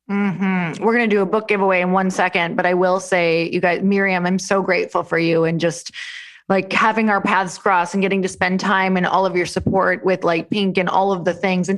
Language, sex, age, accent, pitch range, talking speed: English, female, 20-39, American, 175-215 Hz, 250 wpm